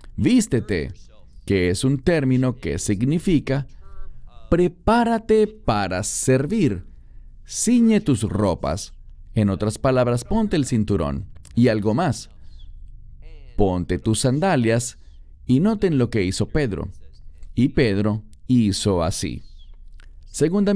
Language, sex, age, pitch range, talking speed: English, male, 40-59, 85-135 Hz, 105 wpm